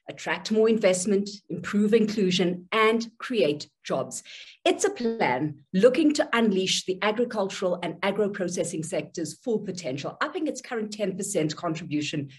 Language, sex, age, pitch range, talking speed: English, female, 50-69, 160-220 Hz, 125 wpm